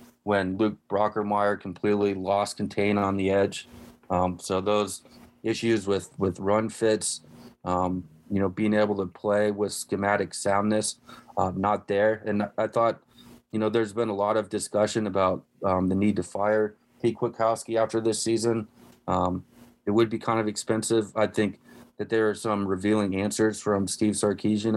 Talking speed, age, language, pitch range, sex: 170 wpm, 30-49, English, 100-110 Hz, male